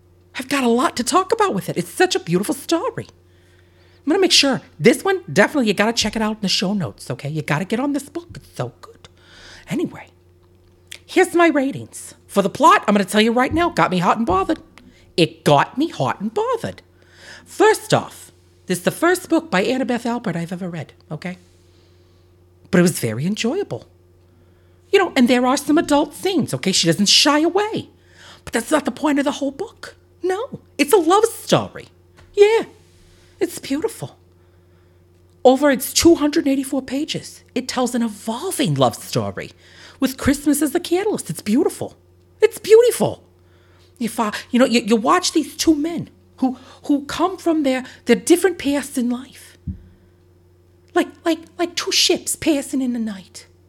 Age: 50-69